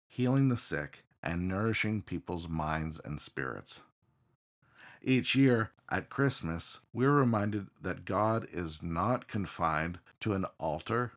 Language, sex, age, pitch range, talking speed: English, male, 50-69, 90-120 Hz, 125 wpm